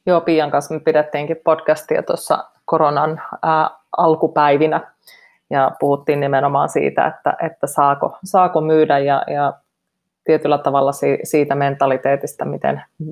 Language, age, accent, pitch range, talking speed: Finnish, 30-49, native, 145-165 Hz, 120 wpm